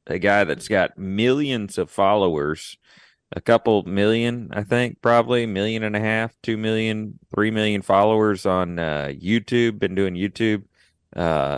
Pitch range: 90-115 Hz